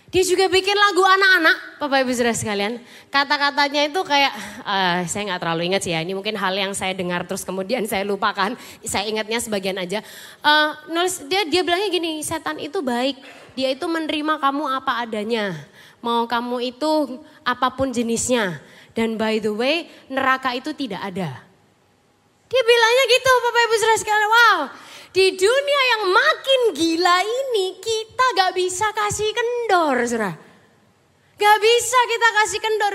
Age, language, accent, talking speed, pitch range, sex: 20-39, Indonesian, native, 155 wpm, 240-395 Hz, female